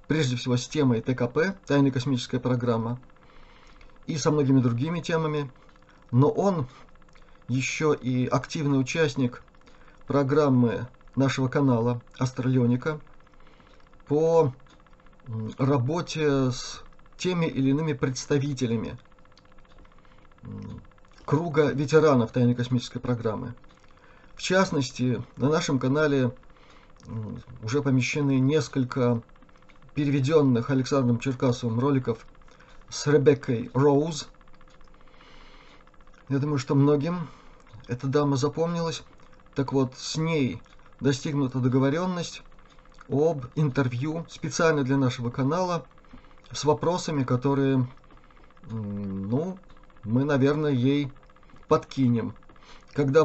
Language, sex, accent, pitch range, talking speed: Russian, male, native, 125-150 Hz, 85 wpm